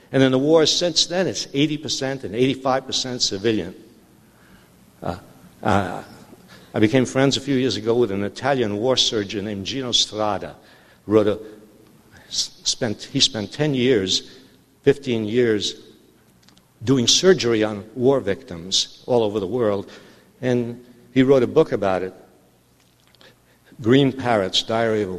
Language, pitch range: English, 100-130 Hz